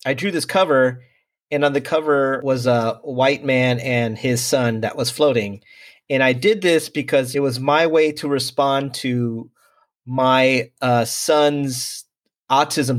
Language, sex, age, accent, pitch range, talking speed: English, male, 30-49, American, 120-140 Hz, 155 wpm